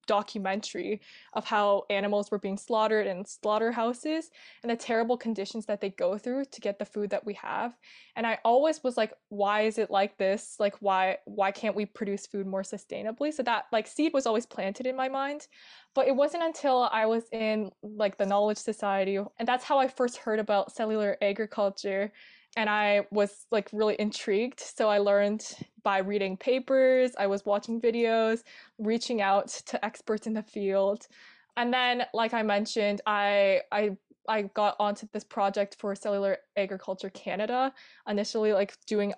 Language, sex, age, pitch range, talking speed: English, female, 20-39, 200-235 Hz, 175 wpm